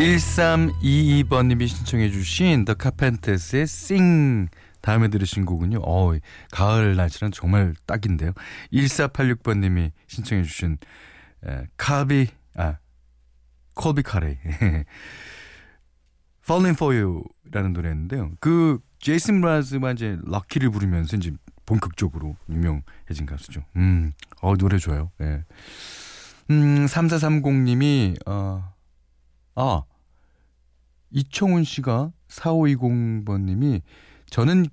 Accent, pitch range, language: native, 85-140 Hz, Korean